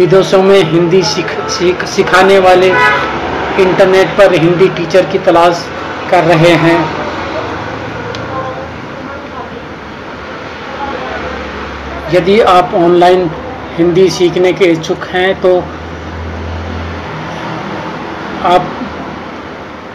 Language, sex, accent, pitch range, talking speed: Hindi, male, native, 170-185 Hz, 80 wpm